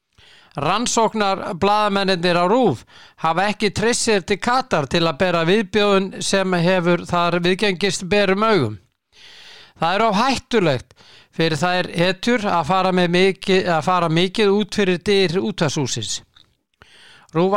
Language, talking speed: English, 130 wpm